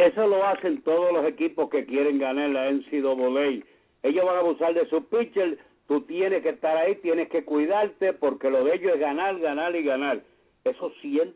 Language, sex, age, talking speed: English, male, 60-79, 195 wpm